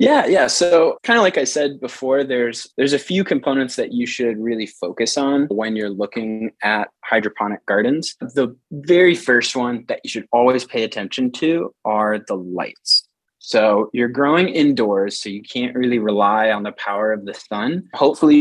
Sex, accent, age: male, American, 20-39